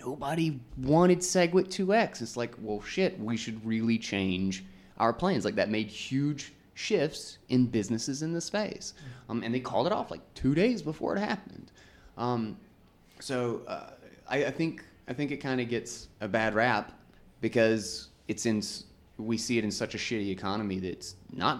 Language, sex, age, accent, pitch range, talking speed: English, male, 20-39, American, 105-150 Hz, 180 wpm